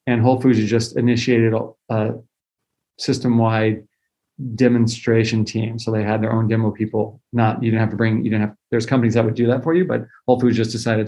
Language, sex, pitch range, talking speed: English, male, 115-135 Hz, 210 wpm